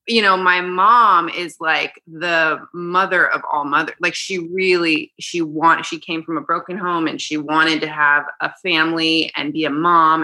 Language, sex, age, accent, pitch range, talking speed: English, female, 20-39, American, 155-180 Hz, 195 wpm